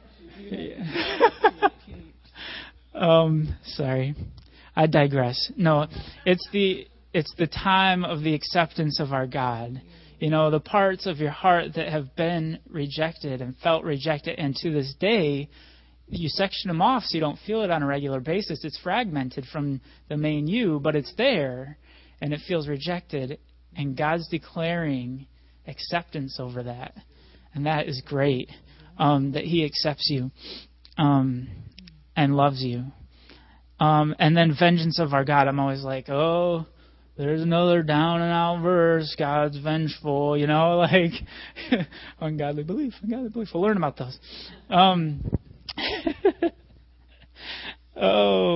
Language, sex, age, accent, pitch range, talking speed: English, male, 30-49, American, 135-170 Hz, 135 wpm